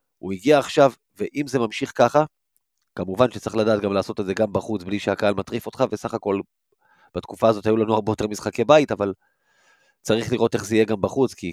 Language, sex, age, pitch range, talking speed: Hebrew, male, 30-49, 105-120 Hz, 205 wpm